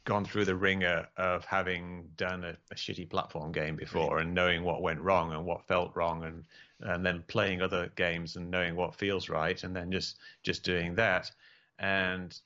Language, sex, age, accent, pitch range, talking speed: English, male, 30-49, British, 85-105 Hz, 195 wpm